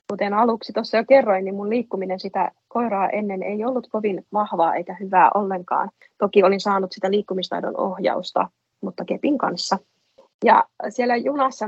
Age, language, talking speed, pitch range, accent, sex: 30-49, Finnish, 155 wpm, 195-245 Hz, native, female